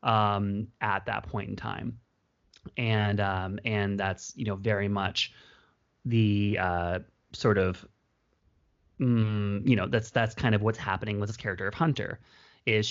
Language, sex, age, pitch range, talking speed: English, male, 30-49, 100-115 Hz, 155 wpm